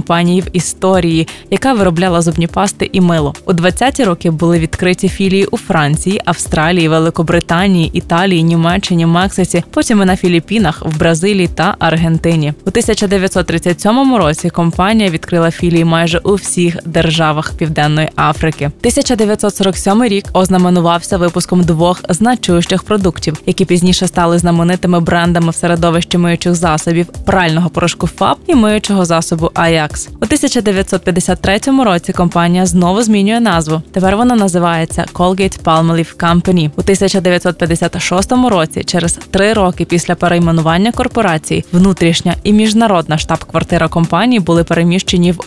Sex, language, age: female, Ukrainian, 20-39